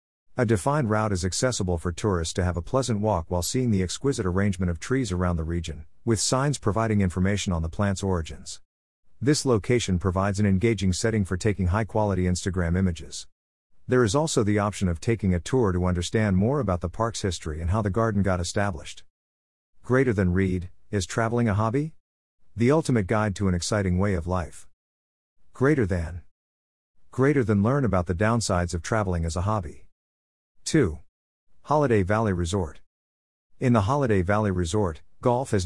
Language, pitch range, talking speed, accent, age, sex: English, 85-110 Hz, 175 wpm, American, 50-69, male